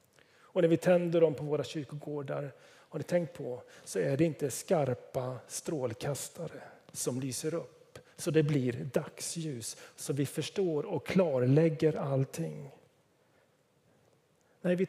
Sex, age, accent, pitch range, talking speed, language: male, 40-59, native, 140-165 Hz, 135 wpm, Swedish